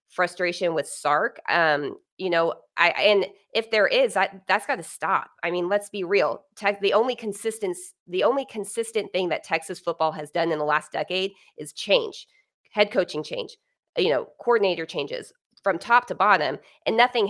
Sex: female